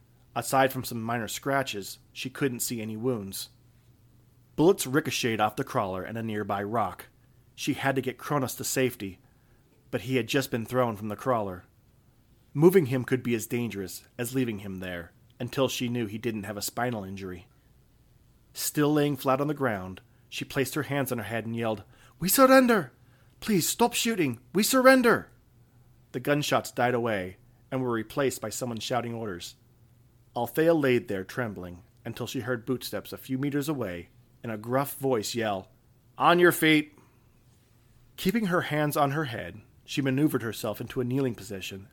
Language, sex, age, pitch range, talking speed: English, male, 30-49, 115-135 Hz, 170 wpm